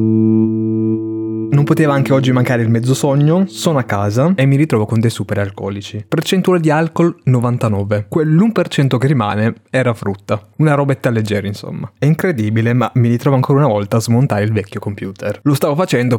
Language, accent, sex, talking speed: Italian, native, male, 175 wpm